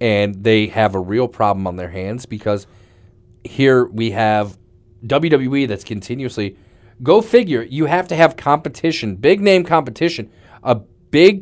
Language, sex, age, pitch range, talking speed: English, male, 30-49, 100-120 Hz, 145 wpm